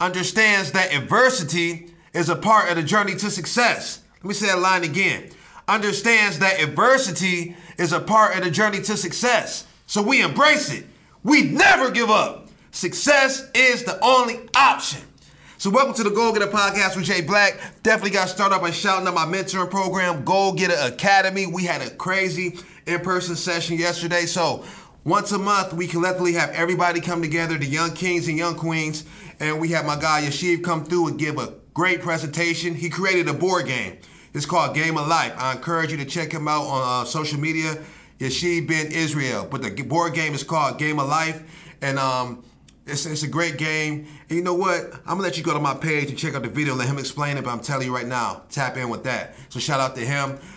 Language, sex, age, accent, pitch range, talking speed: English, male, 30-49, American, 155-190 Hz, 210 wpm